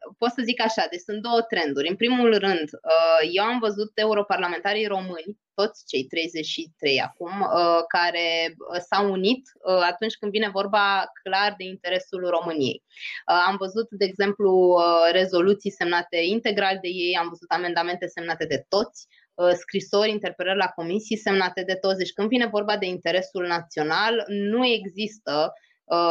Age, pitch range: 20-39, 175-215 Hz